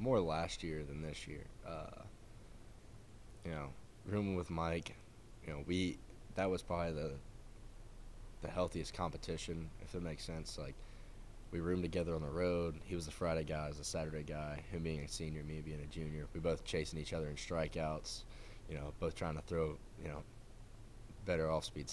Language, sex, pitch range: English, male, 80-100 Hz